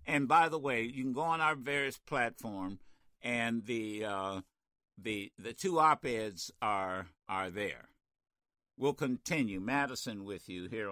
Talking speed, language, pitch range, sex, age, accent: 155 wpm, English, 105-150 Hz, male, 60-79, American